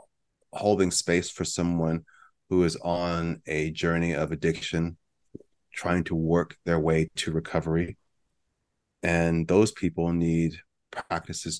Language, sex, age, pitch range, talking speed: English, male, 30-49, 80-90 Hz, 120 wpm